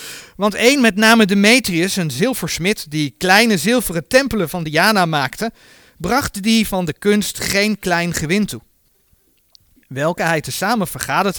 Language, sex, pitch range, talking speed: Dutch, male, 160-220 Hz, 140 wpm